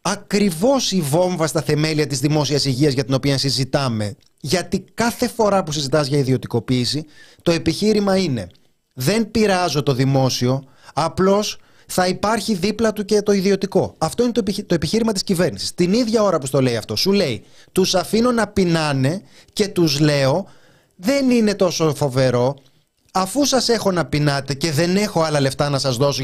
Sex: male